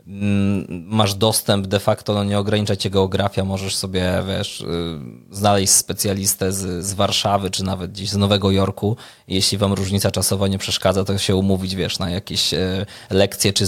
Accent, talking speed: native, 160 wpm